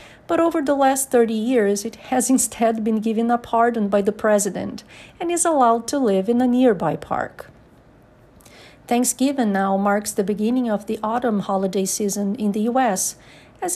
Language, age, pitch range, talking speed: English, 40-59, 195-250 Hz, 170 wpm